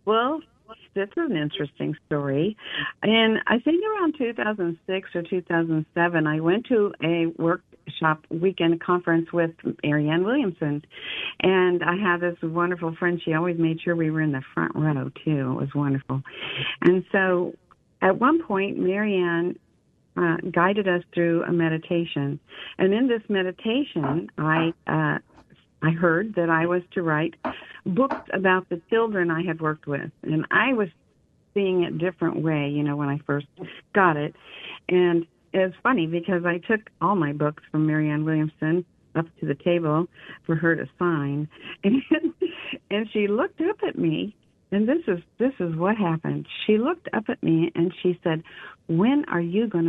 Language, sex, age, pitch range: English, female, 50-69, 160-195 Hz